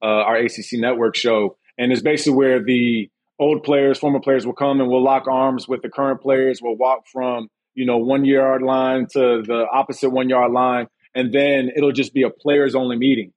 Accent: American